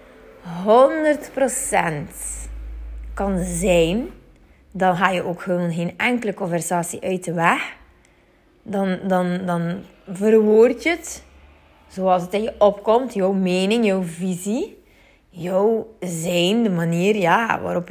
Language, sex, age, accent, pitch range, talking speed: Dutch, female, 20-39, Dutch, 170-210 Hz, 105 wpm